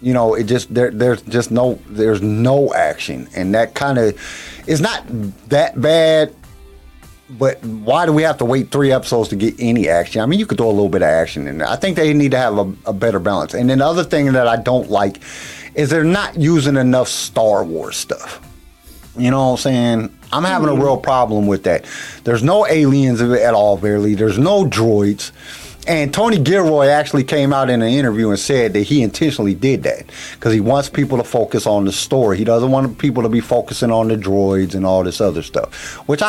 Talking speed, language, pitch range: 220 wpm, English, 105-140 Hz